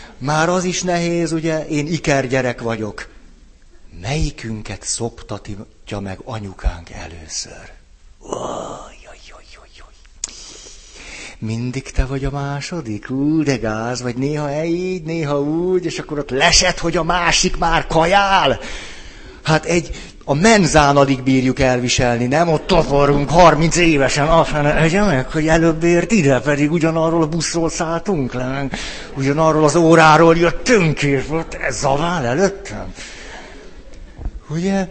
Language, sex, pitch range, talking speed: Hungarian, male, 130-170 Hz, 125 wpm